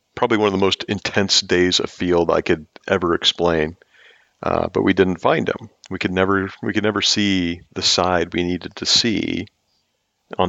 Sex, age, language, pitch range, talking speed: male, 40-59, English, 85-100 Hz, 190 wpm